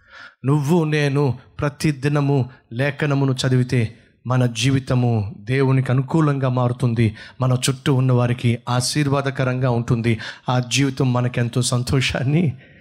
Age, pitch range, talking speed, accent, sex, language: 30-49, 125-160 Hz, 90 wpm, native, male, Telugu